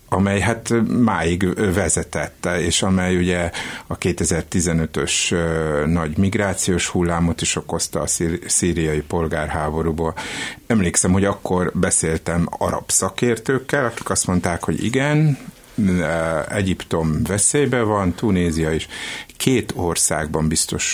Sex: male